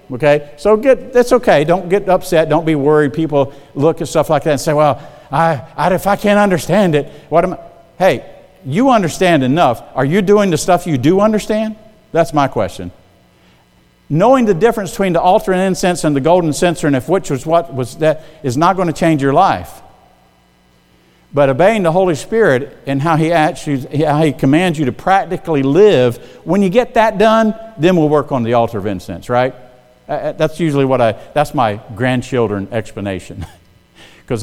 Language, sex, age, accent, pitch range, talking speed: English, male, 50-69, American, 125-180 Hz, 195 wpm